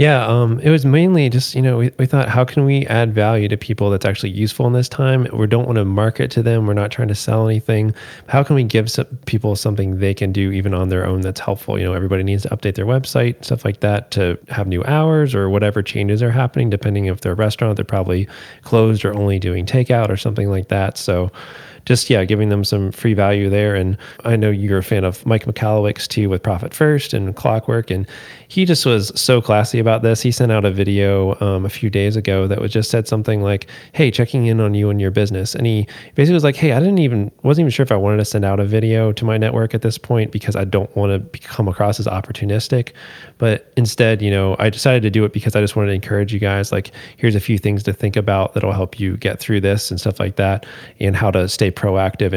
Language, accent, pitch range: English, American, 100-120 Hz